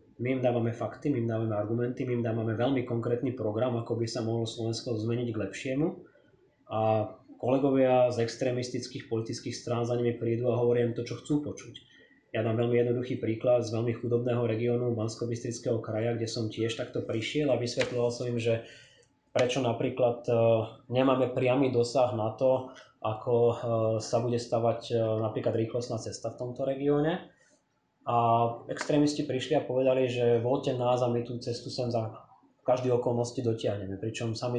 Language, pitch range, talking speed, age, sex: Slovak, 115-125 Hz, 165 wpm, 20-39, male